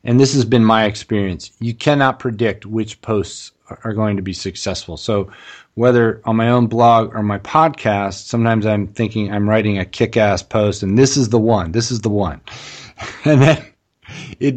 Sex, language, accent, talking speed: male, English, American, 185 wpm